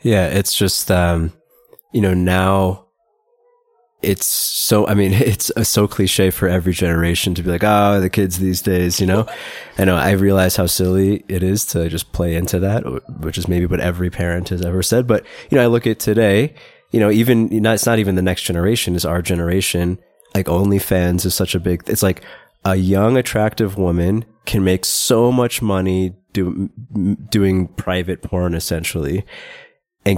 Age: 20-39